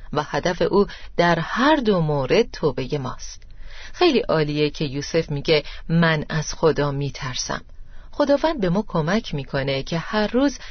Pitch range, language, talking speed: 150-215 Hz, Persian, 145 wpm